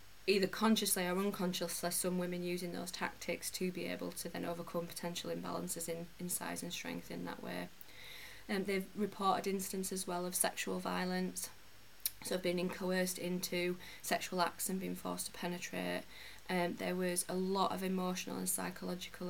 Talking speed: 170 wpm